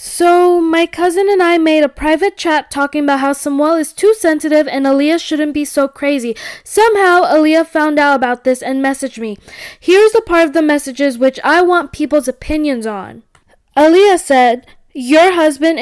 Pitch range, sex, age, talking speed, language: 265-335 Hz, female, 10-29, 180 wpm, English